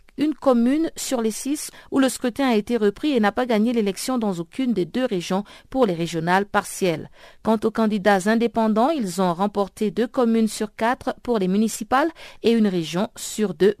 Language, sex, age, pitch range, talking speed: French, female, 50-69, 190-245 Hz, 190 wpm